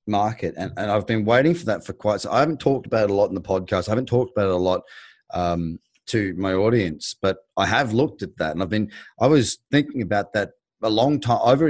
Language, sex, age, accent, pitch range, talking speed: English, male, 30-49, Australian, 105-145 Hz, 255 wpm